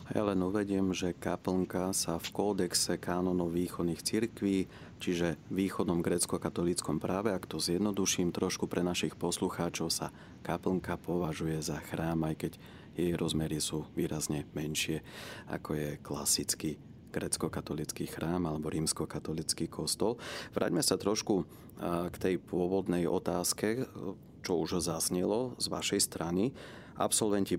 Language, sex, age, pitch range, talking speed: Slovak, male, 30-49, 85-95 Hz, 120 wpm